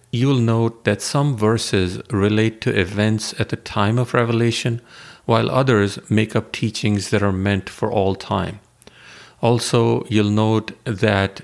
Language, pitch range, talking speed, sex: English, 100-125 Hz, 145 wpm, male